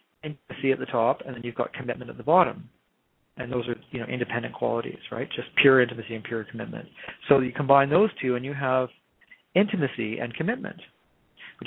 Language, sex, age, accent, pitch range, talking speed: English, male, 40-59, American, 120-150 Hz, 195 wpm